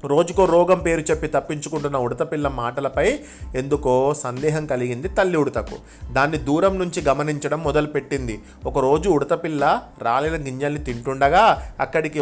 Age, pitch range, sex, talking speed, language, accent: 30-49, 140-170 Hz, male, 115 wpm, Telugu, native